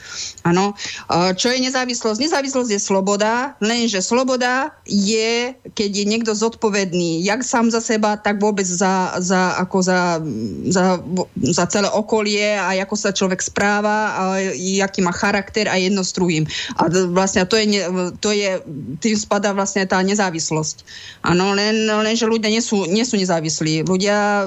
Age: 20-39